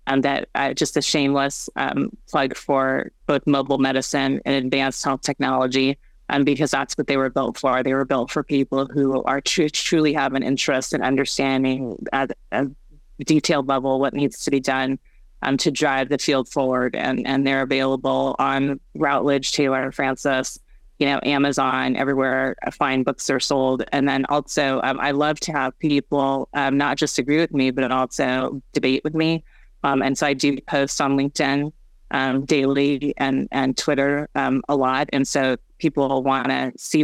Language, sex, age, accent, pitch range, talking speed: English, female, 30-49, American, 135-145 Hz, 185 wpm